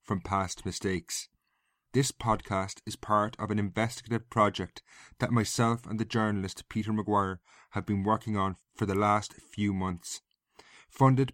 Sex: male